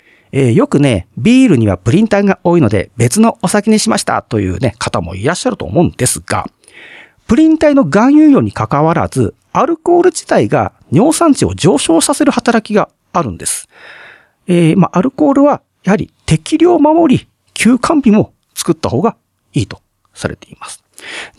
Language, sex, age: Japanese, male, 40-59